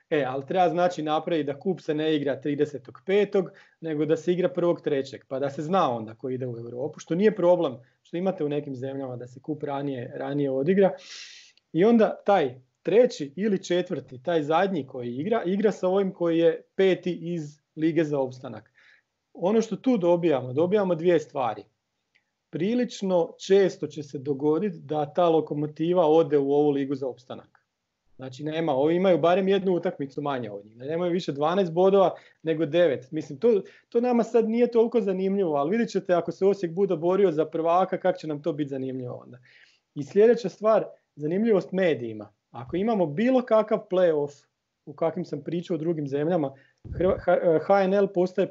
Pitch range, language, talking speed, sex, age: 145-190 Hz, Croatian, 170 wpm, male, 40-59